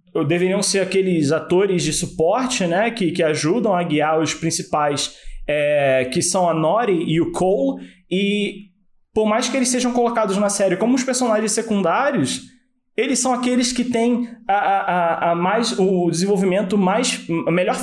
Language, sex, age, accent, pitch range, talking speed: Portuguese, male, 20-39, Brazilian, 160-220 Hz, 140 wpm